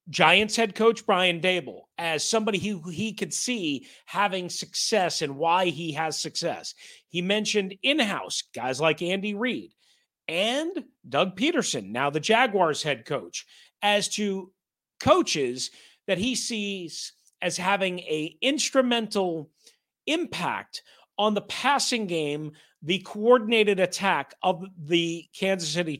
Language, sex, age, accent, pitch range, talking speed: English, male, 40-59, American, 170-225 Hz, 125 wpm